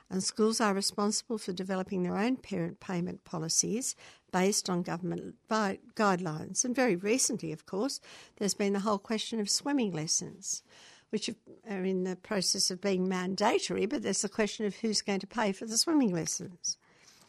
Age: 60-79